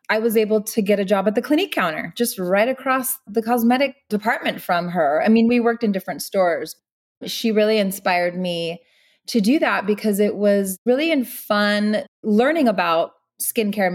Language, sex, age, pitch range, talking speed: English, female, 20-39, 195-245 Hz, 175 wpm